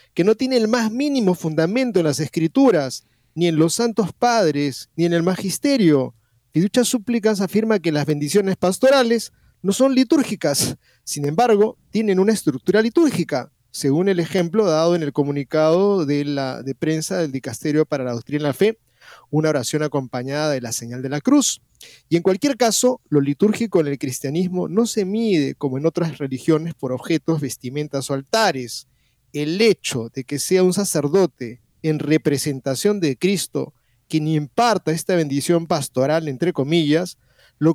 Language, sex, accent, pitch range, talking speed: Spanish, male, Argentinian, 140-205 Hz, 165 wpm